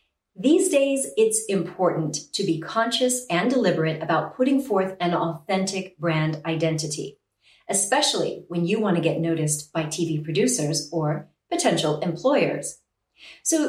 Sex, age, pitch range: female, 40-59, 165-245 Hz